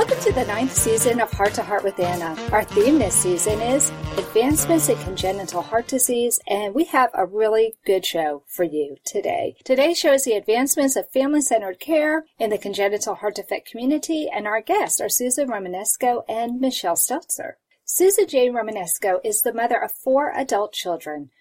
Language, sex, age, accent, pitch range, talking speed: English, female, 40-59, American, 205-295 Hz, 180 wpm